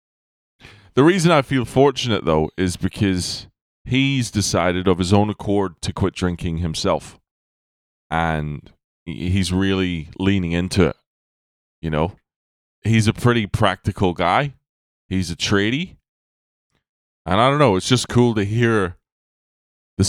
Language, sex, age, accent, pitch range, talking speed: English, male, 20-39, American, 85-110 Hz, 130 wpm